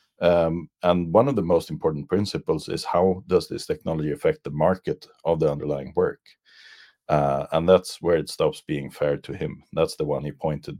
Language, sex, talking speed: English, male, 195 wpm